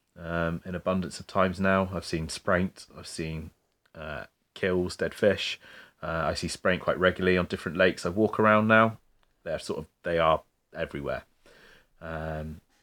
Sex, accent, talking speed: male, British, 165 wpm